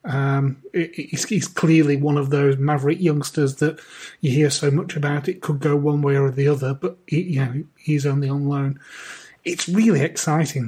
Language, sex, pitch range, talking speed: English, male, 140-165 Hz, 195 wpm